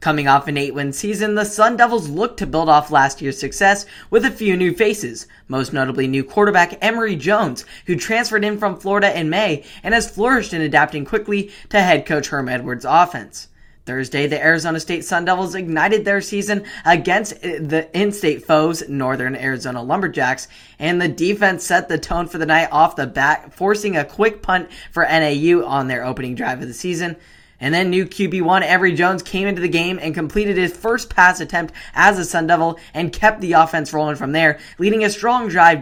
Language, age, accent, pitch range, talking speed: English, 10-29, American, 150-195 Hz, 195 wpm